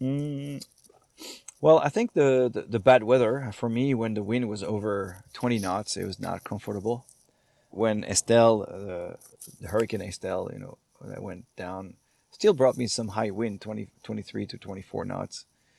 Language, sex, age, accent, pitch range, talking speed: English, male, 30-49, Canadian, 100-120 Hz, 165 wpm